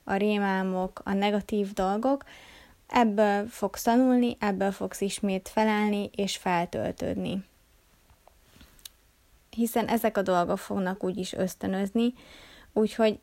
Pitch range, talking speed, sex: 195-230 Hz, 105 wpm, female